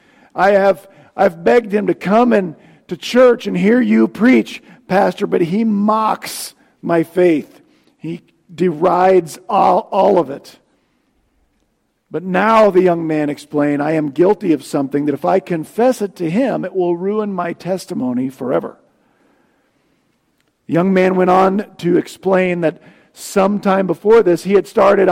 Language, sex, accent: English, male, American